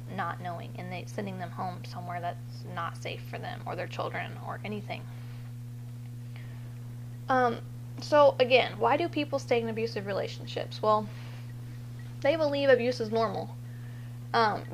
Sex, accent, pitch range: female, American, 120-140 Hz